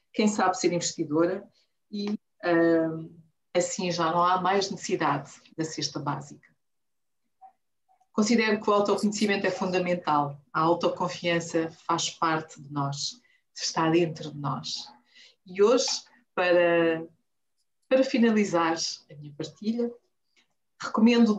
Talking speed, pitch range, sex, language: 110 wpm, 160-200 Hz, female, Portuguese